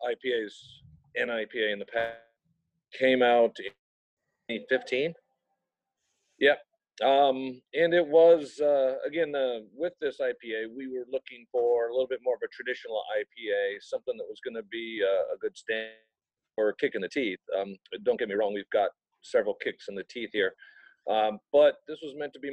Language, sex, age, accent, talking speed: English, male, 40-59, American, 180 wpm